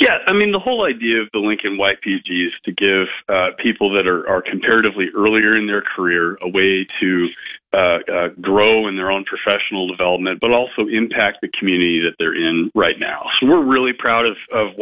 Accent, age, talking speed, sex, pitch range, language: American, 40-59, 205 wpm, male, 95-115 Hz, English